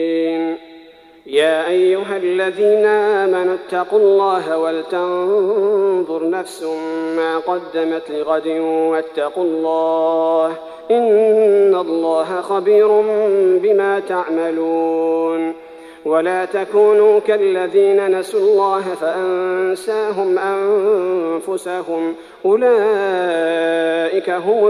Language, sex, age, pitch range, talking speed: Arabic, male, 40-59, 165-210 Hz, 65 wpm